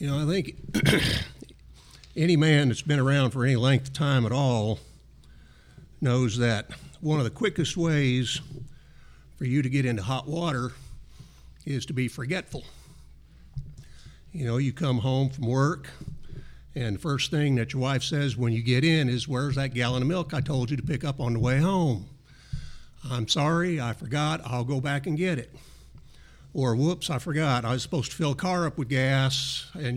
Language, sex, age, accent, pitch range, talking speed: English, male, 50-69, American, 125-155 Hz, 190 wpm